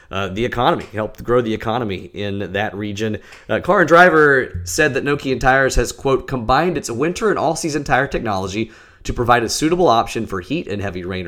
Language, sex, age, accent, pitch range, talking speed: English, male, 30-49, American, 95-125 Hz, 195 wpm